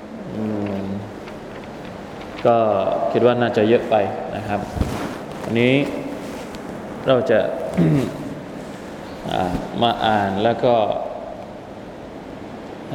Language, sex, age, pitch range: Thai, male, 20-39, 110-125 Hz